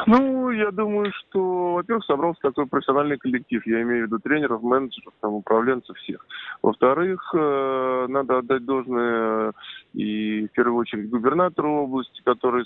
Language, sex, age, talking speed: Russian, male, 20-39, 135 wpm